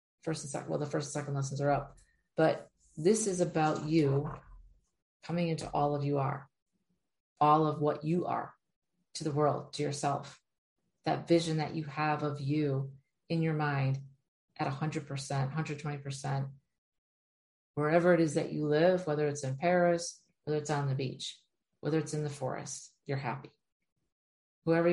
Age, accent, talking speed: 40-59, American, 170 wpm